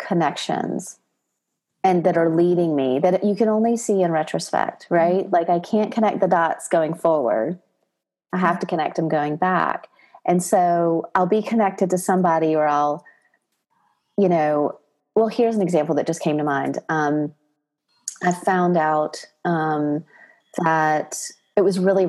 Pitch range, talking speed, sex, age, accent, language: 155-195 Hz, 160 wpm, female, 30-49, American, English